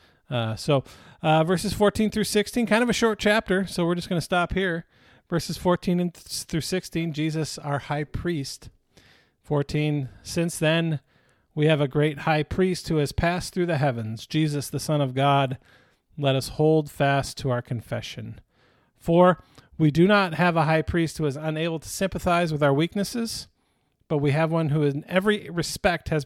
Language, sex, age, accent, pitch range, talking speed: English, male, 40-59, American, 140-180 Hz, 180 wpm